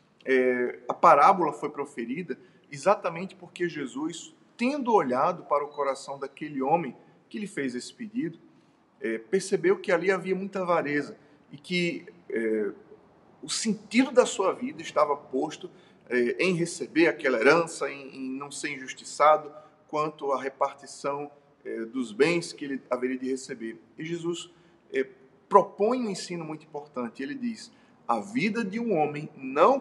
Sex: male